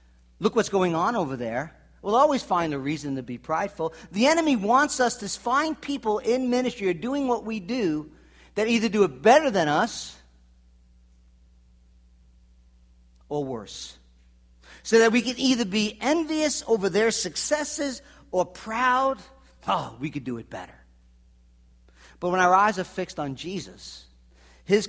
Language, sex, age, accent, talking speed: English, male, 50-69, American, 155 wpm